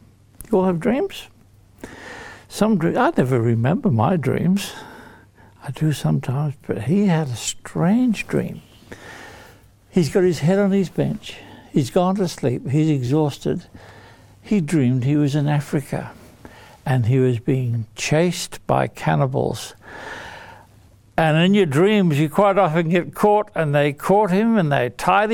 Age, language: 60-79, English